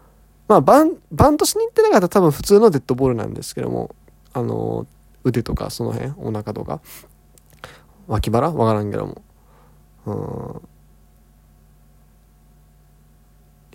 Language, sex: Japanese, male